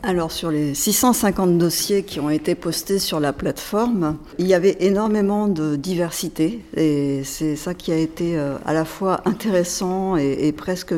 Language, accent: French, French